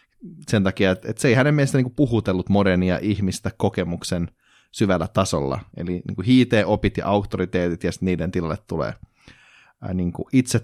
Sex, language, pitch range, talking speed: male, Finnish, 85-105 Hz, 130 wpm